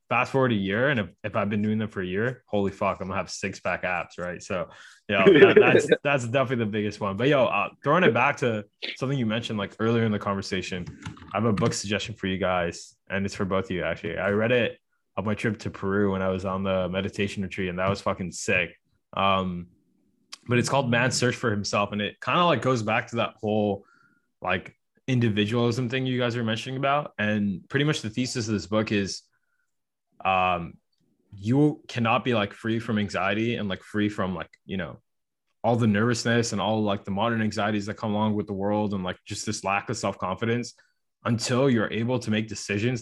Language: English